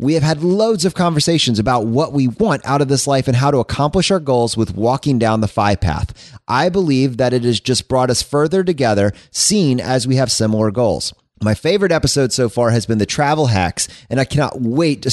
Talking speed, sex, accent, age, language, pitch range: 225 wpm, male, American, 30-49, English, 115-150 Hz